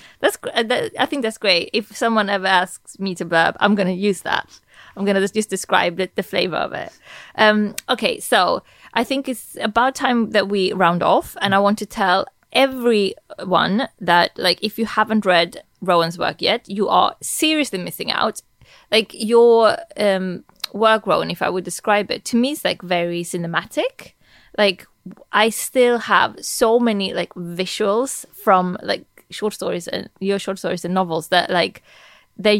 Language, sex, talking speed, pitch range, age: English, female, 175 wpm, 180-225 Hz, 20-39